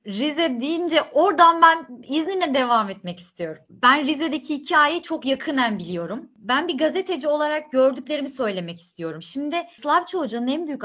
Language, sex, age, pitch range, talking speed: Turkish, female, 30-49, 210-305 Hz, 145 wpm